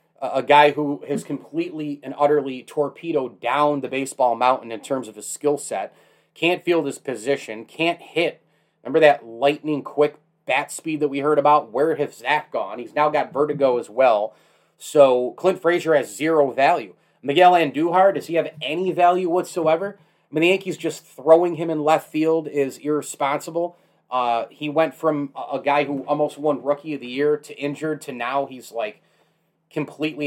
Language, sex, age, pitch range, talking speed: English, male, 30-49, 135-165 Hz, 180 wpm